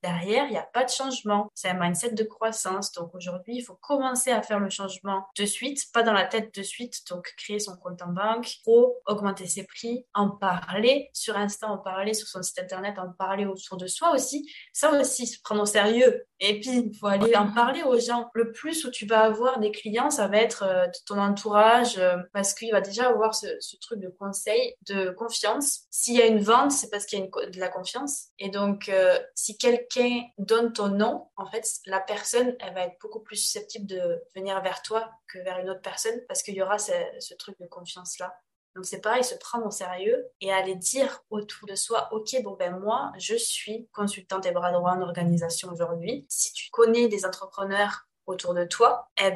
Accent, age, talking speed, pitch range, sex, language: French, 20-39, 220 wpm, 190-240 Hz, female, French